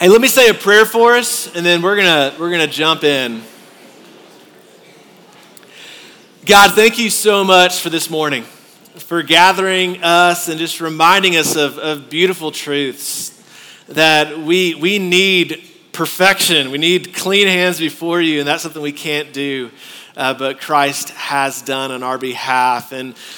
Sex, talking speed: male, 155 wpm